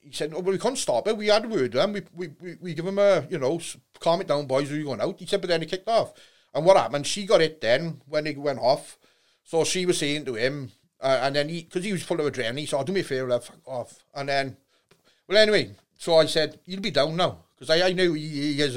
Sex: male